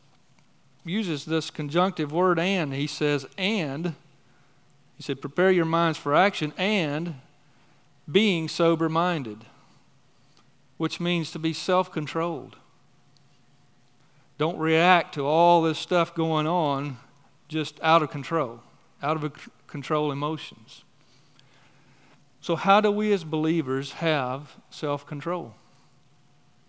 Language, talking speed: English, 105 wpm